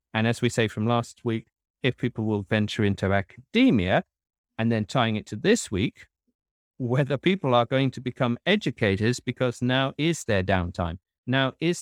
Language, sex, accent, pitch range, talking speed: English, male, British, 110-145 Hz, 175 wpm